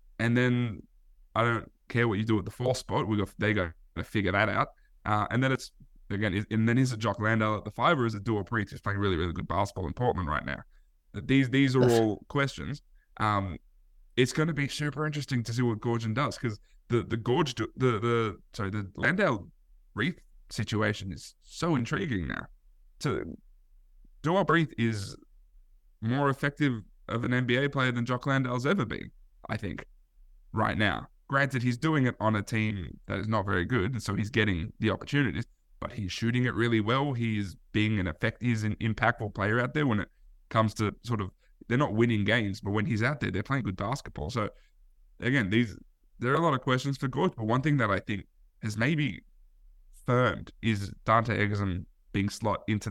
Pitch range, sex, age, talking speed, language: 100-125 Hz, male, 20-39, 205 wpm, English